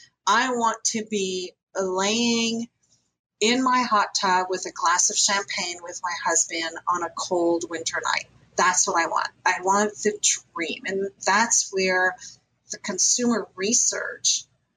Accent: American